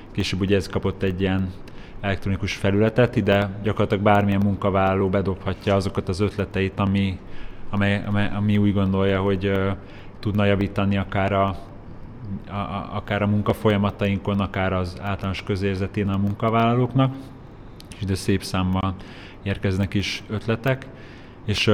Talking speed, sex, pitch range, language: 135 wpm, male, 95-105 Hz, Hungarian